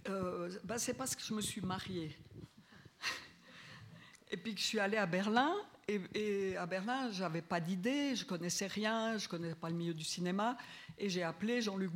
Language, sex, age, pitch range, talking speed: French, female, 50-69, 165-215 Hz, 205 wpm